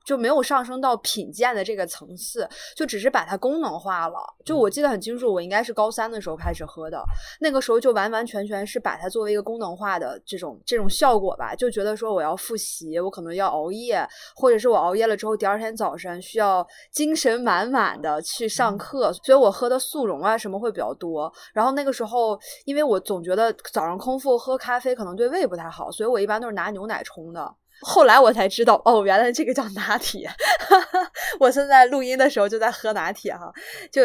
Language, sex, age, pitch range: Chinese, female, 20-39, 200-260 Hz